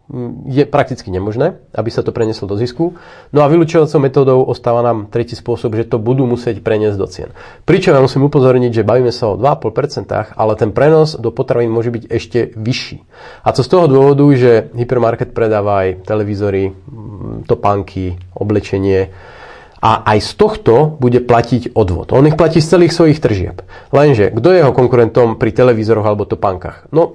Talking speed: 170 wpm